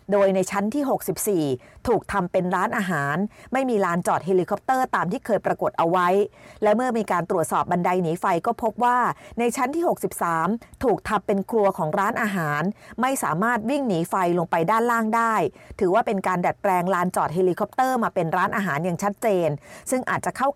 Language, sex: Thai, female